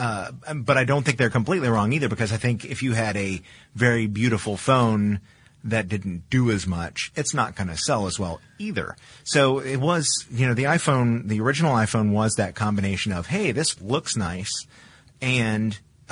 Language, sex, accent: English, male, American